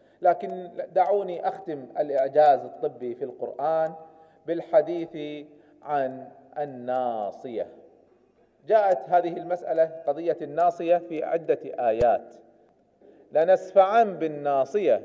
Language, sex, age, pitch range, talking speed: Arabic, male, 40-59, 165-240 Hz, 80 wpm